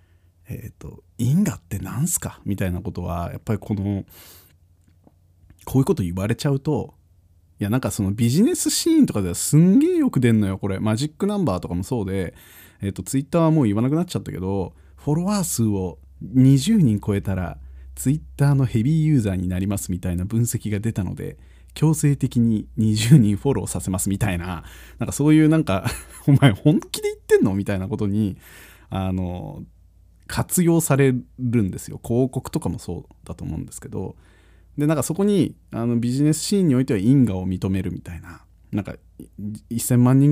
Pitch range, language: 90-140 Hz, Japanese